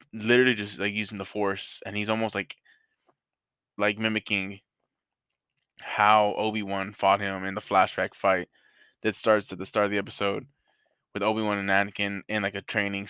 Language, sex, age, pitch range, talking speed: English, male, 20-39, 100-110 Hz, 165 wpm